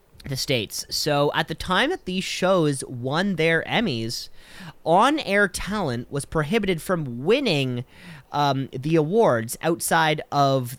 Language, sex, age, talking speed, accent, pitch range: English, male, 30-49, 130 wpm, American, 135-185 Hz